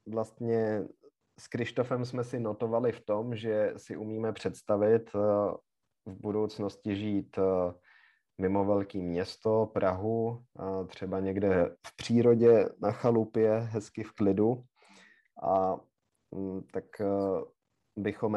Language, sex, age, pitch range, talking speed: Czech, male, 30-49, 95-110 Hz, 100 wpm